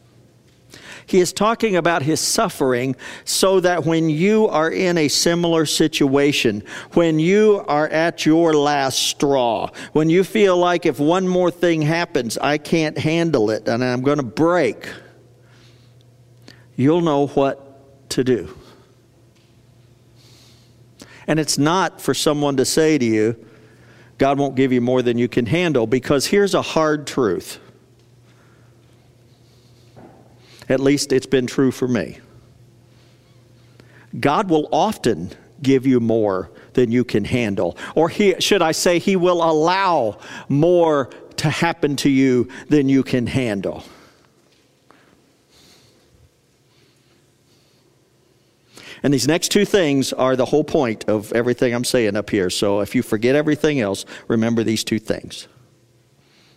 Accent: American